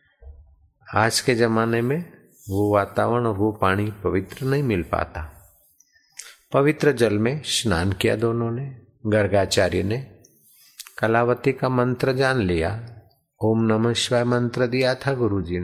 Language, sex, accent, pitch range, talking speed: Hindi, male, native, 100-140 Hz, 125 wpm